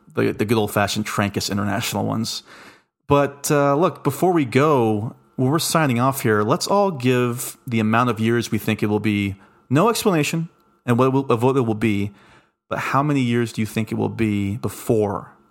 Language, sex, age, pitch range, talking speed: English, male, 30-49, 105-130 Hz, 200 wpm